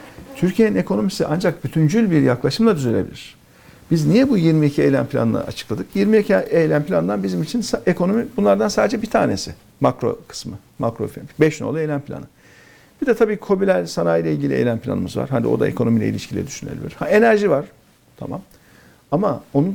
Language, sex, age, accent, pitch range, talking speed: Turkish, male, 50-69, native, 125-175 Hz, 160 wpm